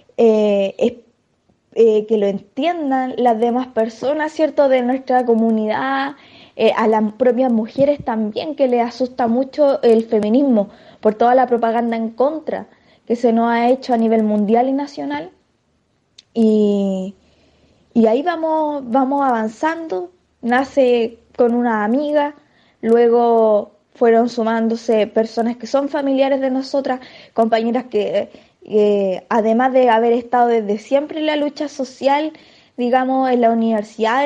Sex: female